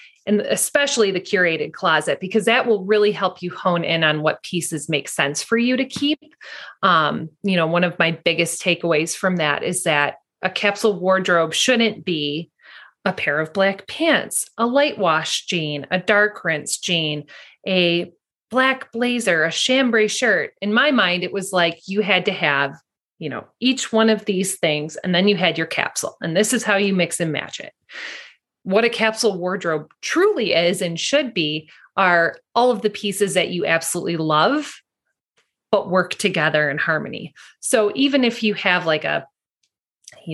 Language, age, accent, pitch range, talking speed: English, 30-49, American, 165-215 Hz, 180 wpm